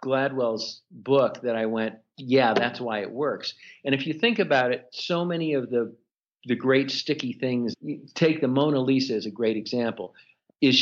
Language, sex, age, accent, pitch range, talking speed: English, male, 50-69, American, 120-150 Hz, 185 wpm